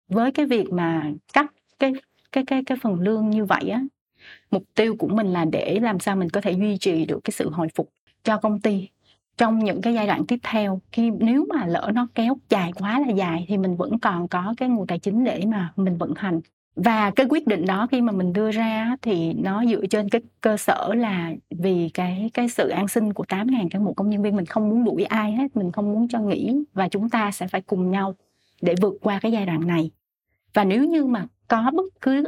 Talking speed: 240 wpm